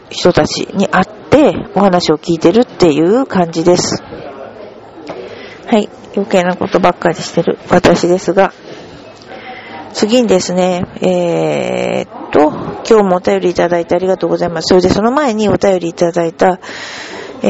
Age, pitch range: 40-59, 180-210 Hz